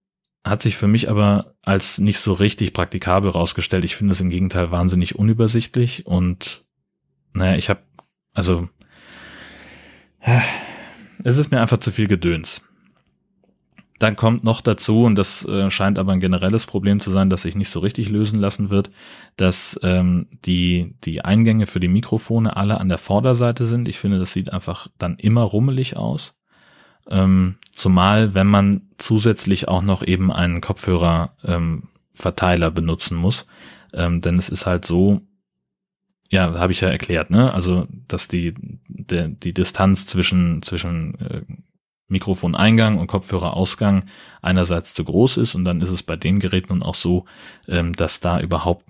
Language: German